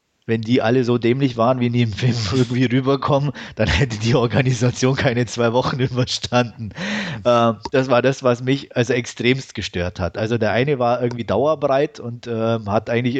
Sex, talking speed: male, 180 wpm